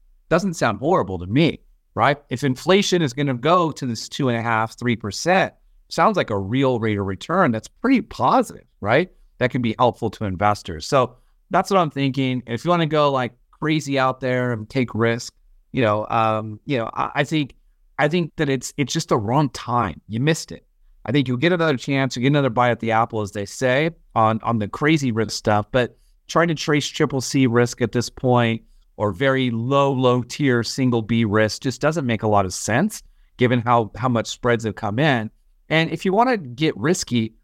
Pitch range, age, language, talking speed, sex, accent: 110-145 Hz, 30-49, English, 220 wpm, male, American